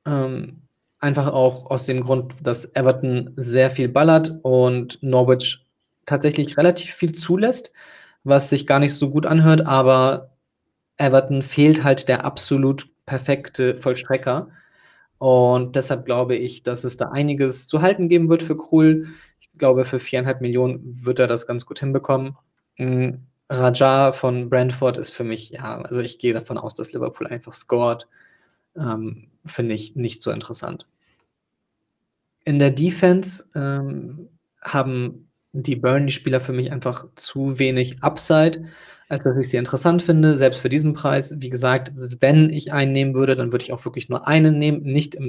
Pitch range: 125-145 Hz